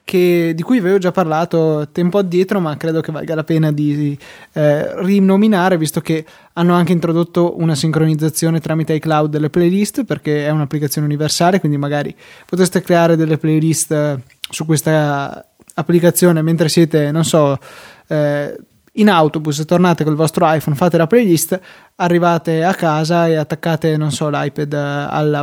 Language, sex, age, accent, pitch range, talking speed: Italian, male, 20-39, native, 155-175 Hz, 155 wpm